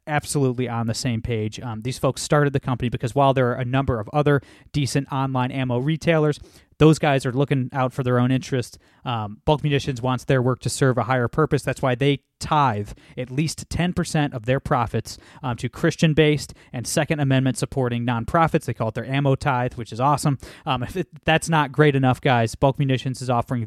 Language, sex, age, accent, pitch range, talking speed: English, male, 20-39, American, 125-145 Hz, 200 wpm